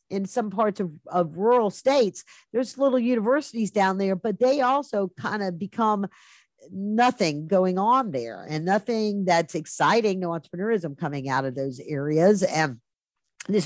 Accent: American